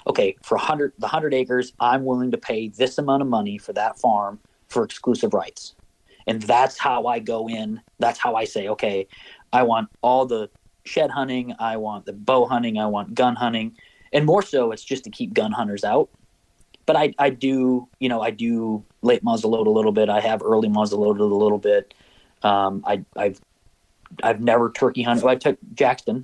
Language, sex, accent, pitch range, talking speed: English, male, American, 105-135 Hz, 195 wpm